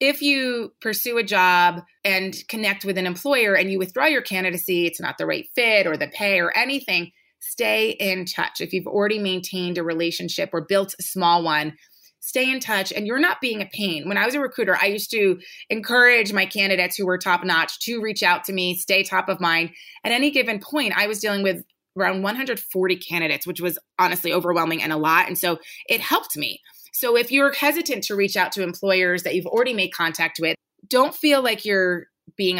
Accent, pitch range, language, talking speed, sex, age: American, 175-225 Hz, English, 210 wpm, female, 30-49